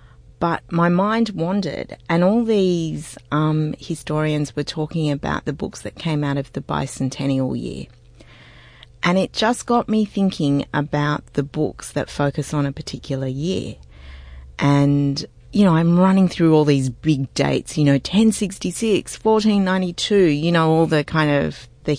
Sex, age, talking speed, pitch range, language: female, 30-49, 155 wpm, 135-175 Hz, English